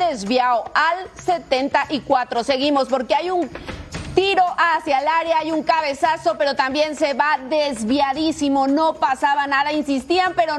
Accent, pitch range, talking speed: Mexican, 295-350 Hz, 135 wpm